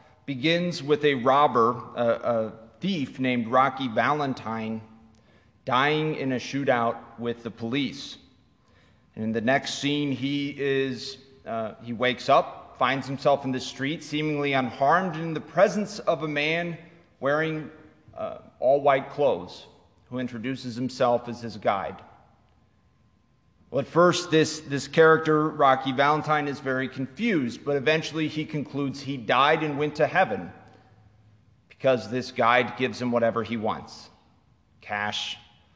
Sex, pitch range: male, 115-145 Hz